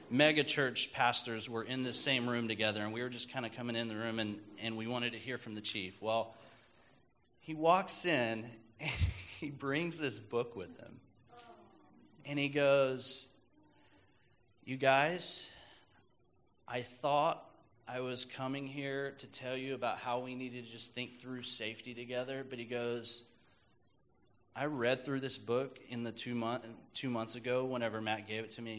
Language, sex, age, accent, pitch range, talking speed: English, male, 30-49, American, 115-140 Hz, 175 wpm